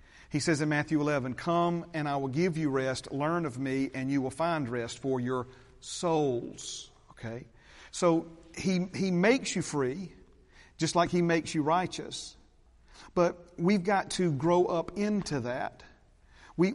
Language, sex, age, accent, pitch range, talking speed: English, male, 40-59, American, 155-185 Hz, 160 wpm